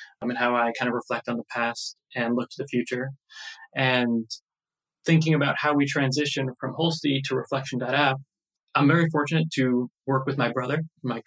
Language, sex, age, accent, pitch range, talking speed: English, male, 20-39, American, 125-145 Hz, 185 wpm